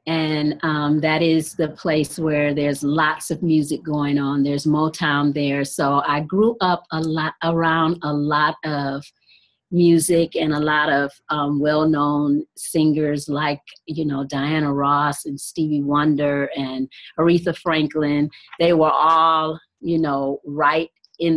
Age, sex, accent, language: 40-59, female, American, English